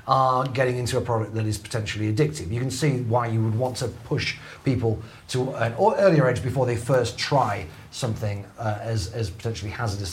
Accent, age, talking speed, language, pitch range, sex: British, 30-49, 195 wpm, English, 115-150 Hz, male